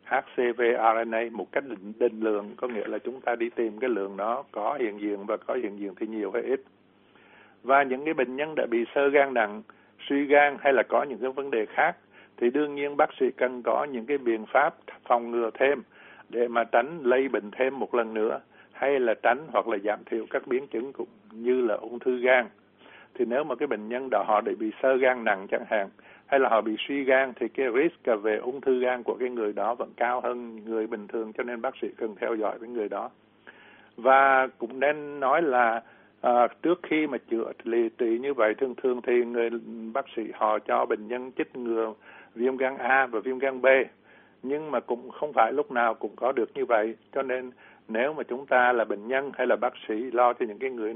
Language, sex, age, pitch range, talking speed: Vietnamese, male, 60-79, 115-135 Hz, 235 wpm